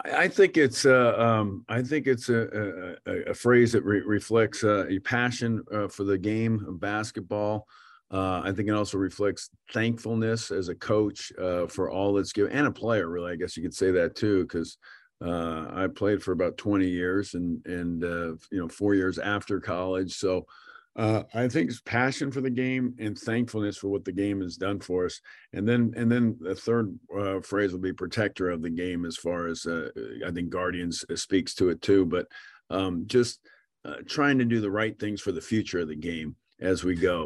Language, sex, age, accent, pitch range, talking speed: English, male, 50-69, American, 90-110 Hz, 210 wpm